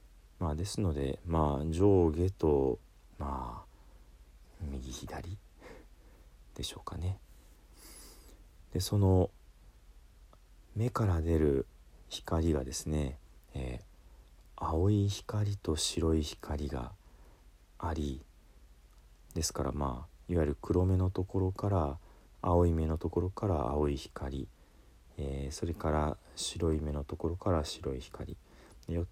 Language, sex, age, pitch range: Japanese, male, 40-59, 65-90 Hz